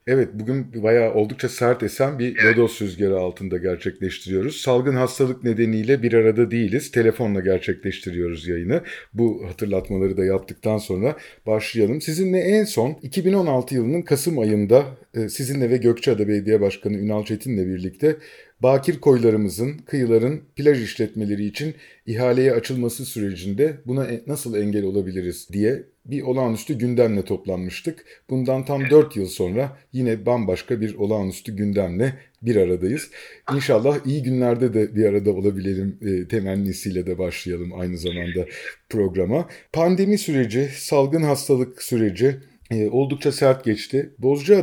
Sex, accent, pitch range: male, native, 100-135 Hz